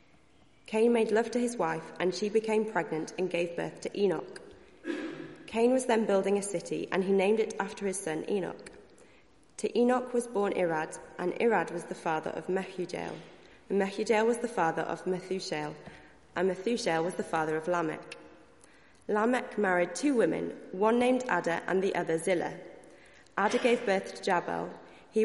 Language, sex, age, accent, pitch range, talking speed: English, female, 20-39, British, 175-225 Hz, 170 wpm